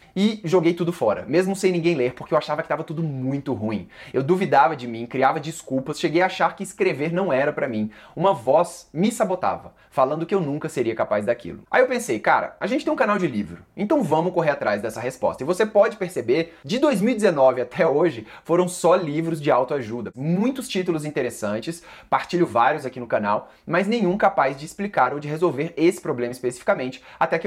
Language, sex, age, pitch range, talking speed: Portuguese, male, 20-39, 130-185 Hz, 205 wpm